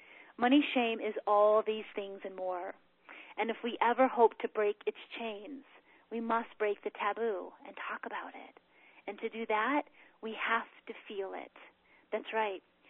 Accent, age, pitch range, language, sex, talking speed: American, 30-49, 205-245 Hz, English, female, 170 wpm